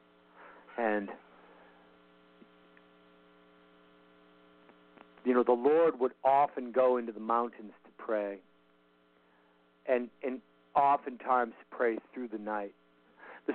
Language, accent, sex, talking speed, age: English, American, male, 95 wpm, 50-69